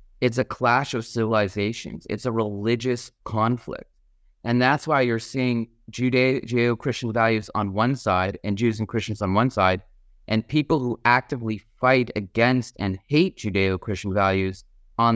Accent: American